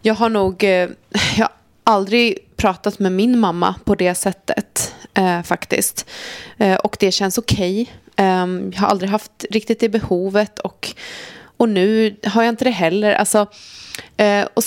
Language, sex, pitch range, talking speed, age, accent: Swedish, female, 180-230 Hz, 145 wpm, 20-39, native